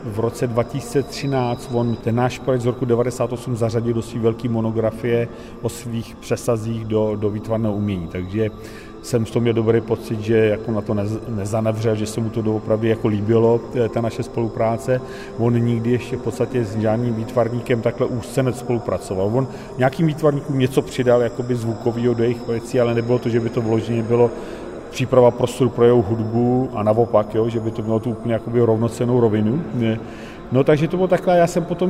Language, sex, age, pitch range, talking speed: Czech, male, 40-59, 115-130 Hz, 180 wpm